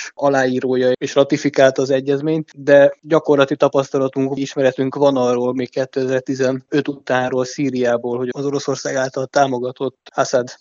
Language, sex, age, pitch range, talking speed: Hungarian, male, 20-39, 130-145 Hz, 120 wpm